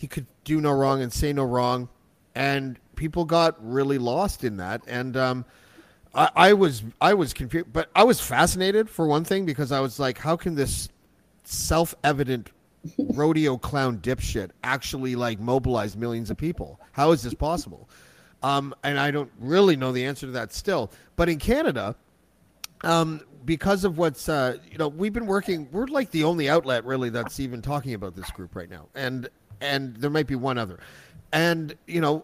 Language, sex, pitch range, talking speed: English, male, 125-170 Hz, 185 wpm